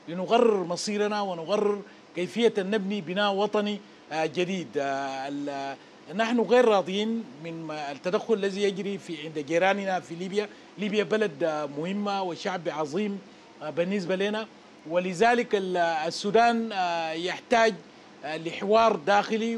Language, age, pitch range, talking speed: Arabic, 40-59, 175-225 Hz, 100 wpm